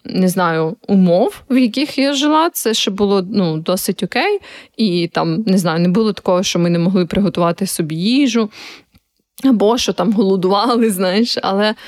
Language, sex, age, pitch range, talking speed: Ukrainian, female, 20-39, 185-225 Hz, 165 wpm